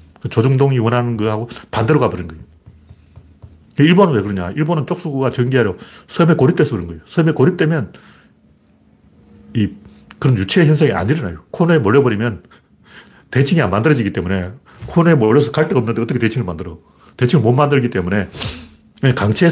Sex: male